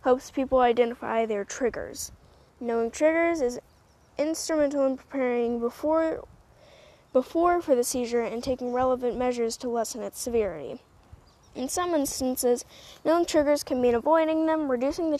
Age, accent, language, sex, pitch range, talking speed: 10-29, American, English, female, 225-300 Hz, 140 wpm